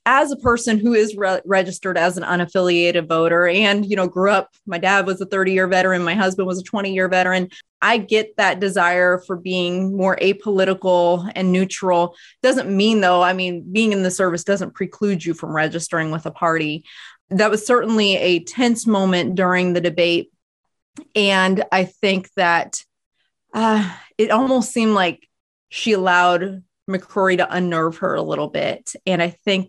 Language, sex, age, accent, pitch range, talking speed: English, female, 30-49, American, 180-205 Hz, 175 wpm